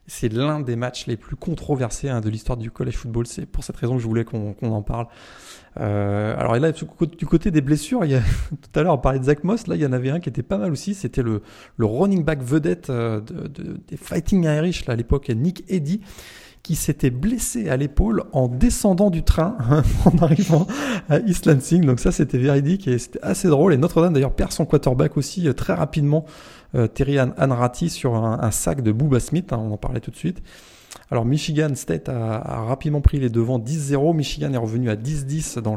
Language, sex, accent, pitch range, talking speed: French, male, French, 120-150 Hz, 230 wpm